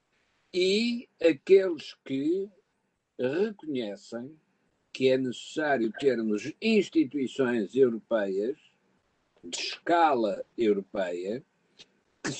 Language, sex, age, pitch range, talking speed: Portuguese, male, 60-79, 130-210 Hz, 70 wpm